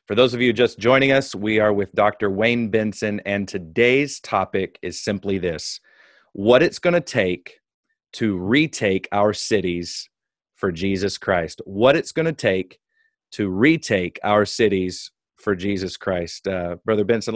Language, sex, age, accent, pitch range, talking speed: English, male, 30-49, American, 95-115 Hz, 160 wpm